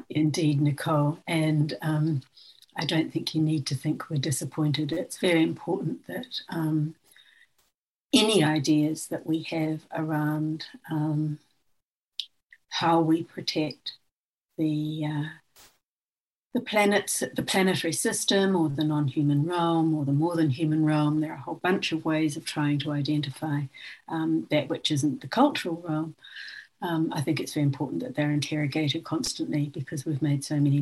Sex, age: female, 60-79